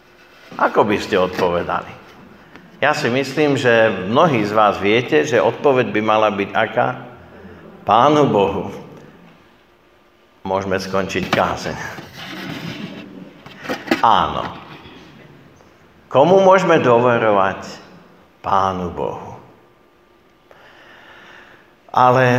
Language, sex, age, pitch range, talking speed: Slovak, male, 50-69, 110-155 Hz, 80 wpm